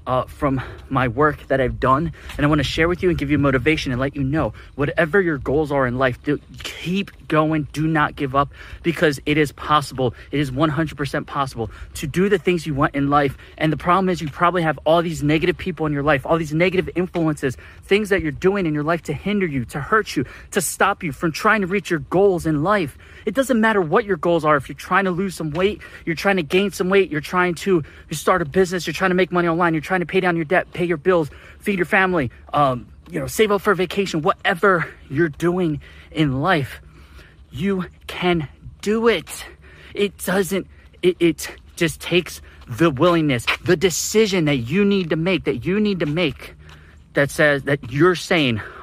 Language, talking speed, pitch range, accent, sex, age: English, 220 wpm, 140-185 Hz, American, male, 20-39